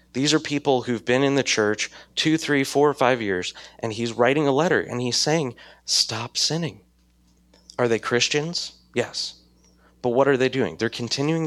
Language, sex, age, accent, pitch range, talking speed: English, male, 20-39, American, 105-135 Hz, 185 wpm